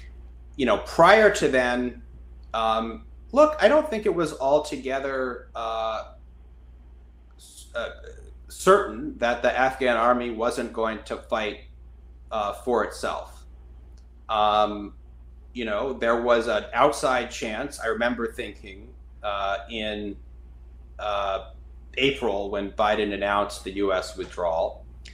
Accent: American